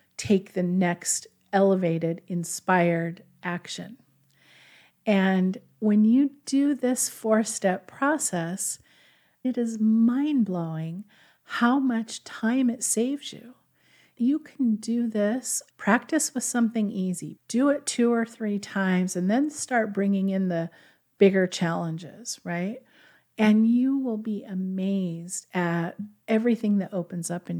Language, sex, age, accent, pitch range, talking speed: English, female, 40-59, American, 180-230 Hz, 120 wpm